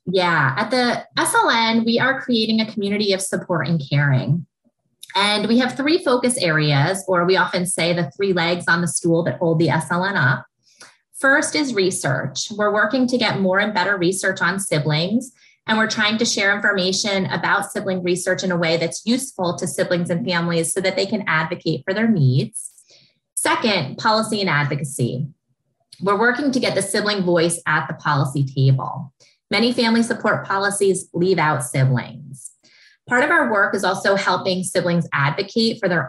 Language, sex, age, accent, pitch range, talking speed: English, female, 20-39, American, 160-215 Hz, 175 wpm